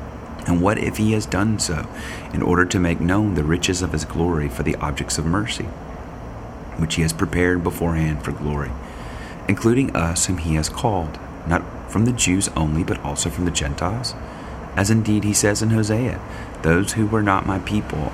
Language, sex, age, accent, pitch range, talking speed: English, male, 30-49, American, 80-100 Hz, 190 wpm